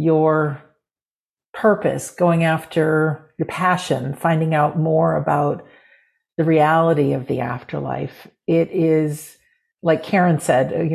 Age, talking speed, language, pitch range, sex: 50-69, 115 wpm, English, 140-170 Hz, female